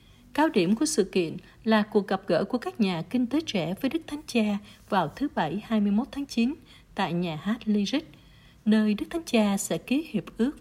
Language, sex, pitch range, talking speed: Vietnamese, female, 190-265 Hz, 210 wpm